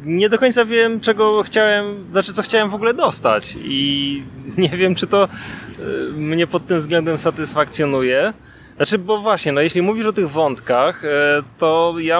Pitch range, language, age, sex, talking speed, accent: 160-215 Hz, Polish, 20-39, male, 155 wpm, native